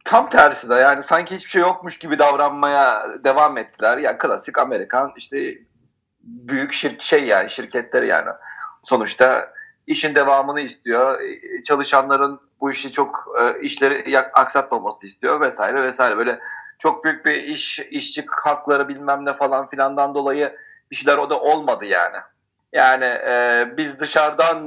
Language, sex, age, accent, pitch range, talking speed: Turkish, male, 40-59, native, 140-180 Hz, 140 wpm